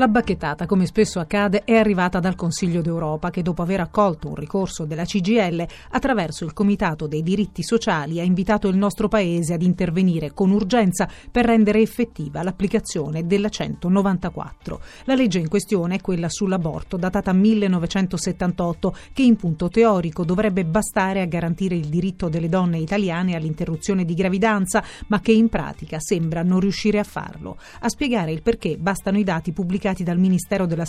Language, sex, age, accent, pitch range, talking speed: Italian, female, 30-49, native, 170-210 Hz, 165 wpm